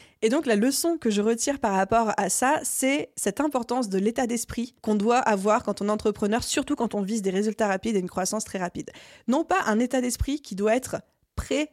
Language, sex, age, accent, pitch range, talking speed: French, female, 20-39, French, 200-240 Hz, 230 wpm